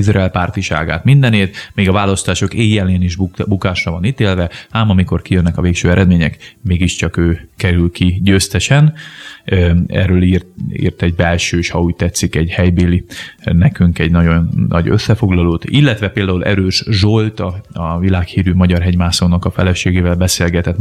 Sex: male